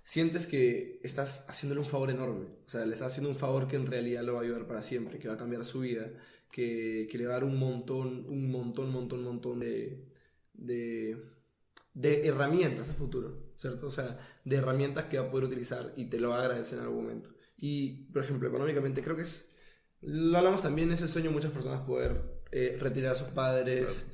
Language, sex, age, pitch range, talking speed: Spanish, male, 20-39, 125-145 Hz, 225 wpm